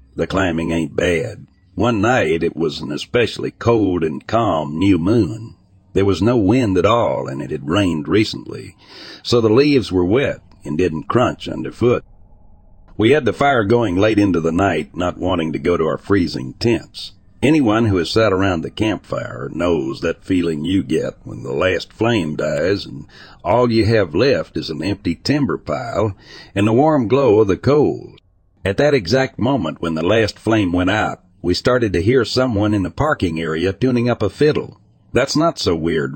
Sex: male